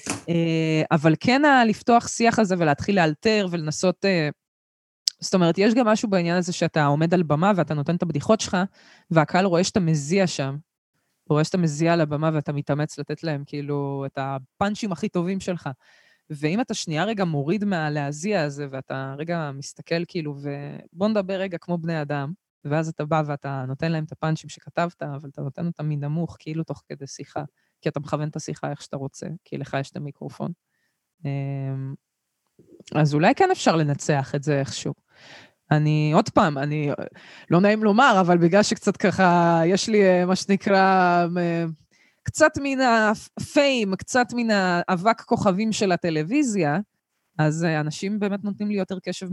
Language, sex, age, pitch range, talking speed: Hebrew, female, 20-39, 145-195 Hz, 150 wpm